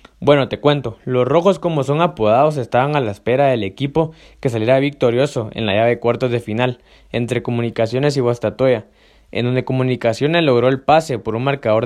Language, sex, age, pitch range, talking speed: Spanish, male, 20-39, 115-140 Hz, 185 wpm